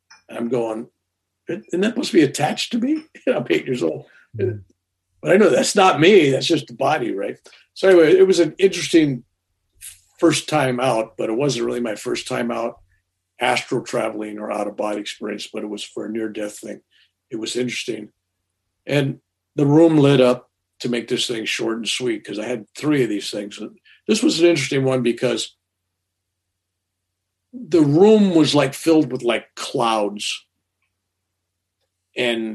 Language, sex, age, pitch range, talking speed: English, male, 50-69, 95-135 Hz, 170 wpm